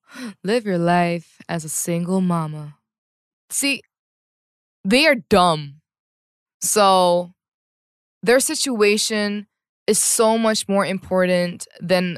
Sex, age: female, 20-39